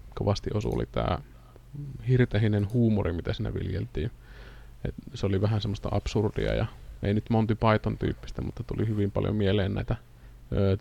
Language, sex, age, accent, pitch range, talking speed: Finnish, male, 20-39, native, 100-115 Hz, 150 wpm